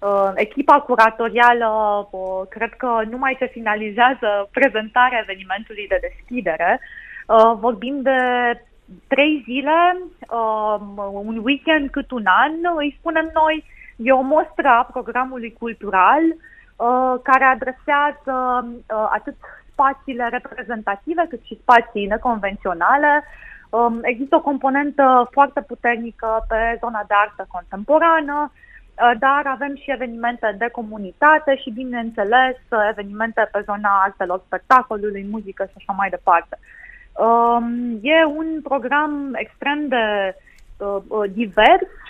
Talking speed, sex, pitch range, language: 115 wpm, female, 215-275 Hz, Romanian